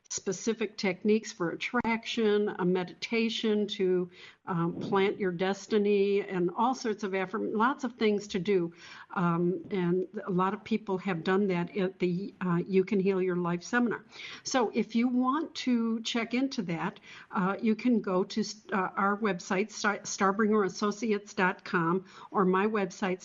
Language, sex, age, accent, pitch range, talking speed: English, female, 60-79, American, 190-220 Hz, 155 wpm